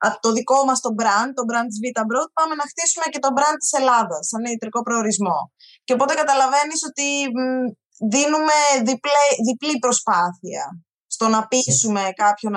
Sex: female